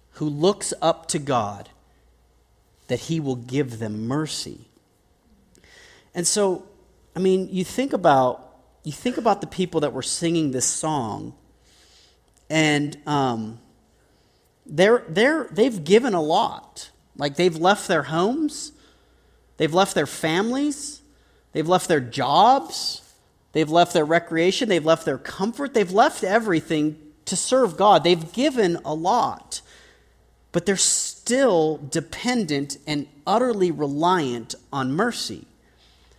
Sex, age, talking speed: male, 40-59, 125 wpm